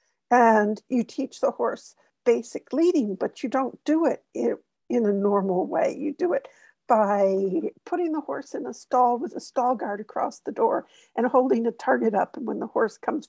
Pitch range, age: 225-325 Hz, 60-79